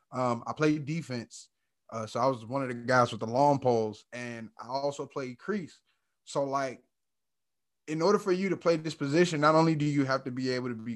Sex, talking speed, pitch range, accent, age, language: male, 225 wpm, 125-170 Hz, American, 20-39, English